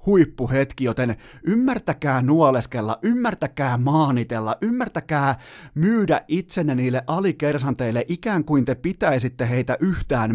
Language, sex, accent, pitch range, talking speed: Finnish, male, native, 120-150 Hz, 100 wpm